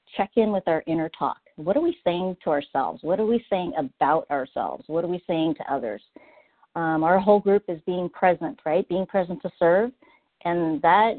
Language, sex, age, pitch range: English, female, 50-69, 165-205 Hz